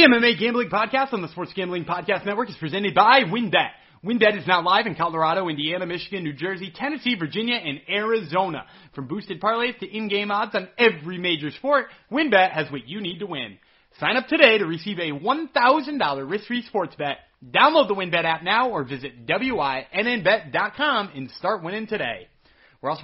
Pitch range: 160-235 Hz